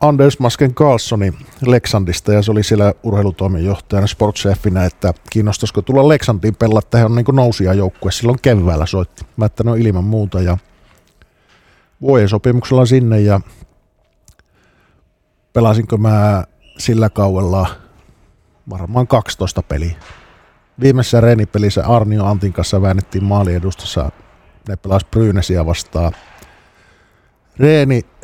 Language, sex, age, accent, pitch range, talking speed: Finnish, male, 50-69, native, 95-115 Hz, 105 wpm